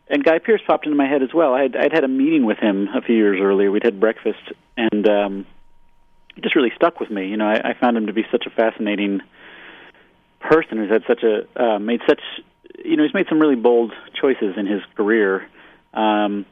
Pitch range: 100-120 Hz